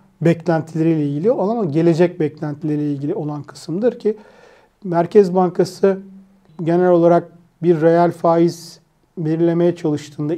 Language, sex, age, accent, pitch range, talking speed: Turkish, male, 40-59, native, 160-185 Hz, 110 wpm